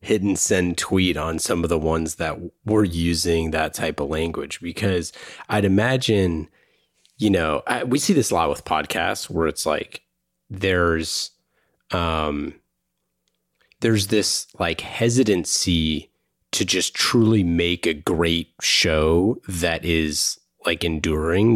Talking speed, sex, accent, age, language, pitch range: 135 wpm, male, American, 30-49, English, 80-110 Hz